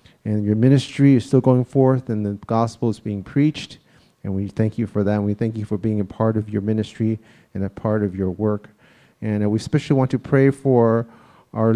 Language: Chinese